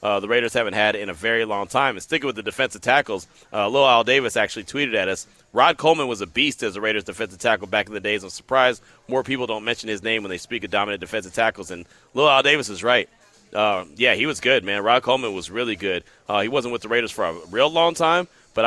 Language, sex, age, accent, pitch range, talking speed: English, male, 30-49, American, 105-135 Hz, 265 wpm